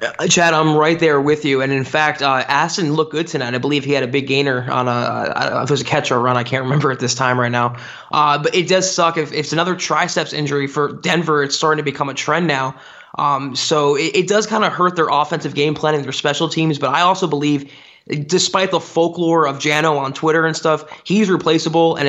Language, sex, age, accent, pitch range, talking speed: English, male, 20-39, American, 135-160 Hz, 250 wpm